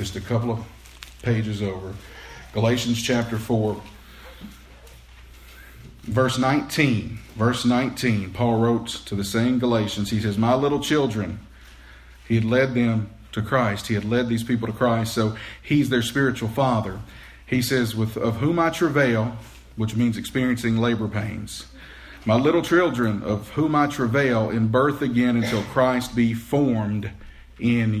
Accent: American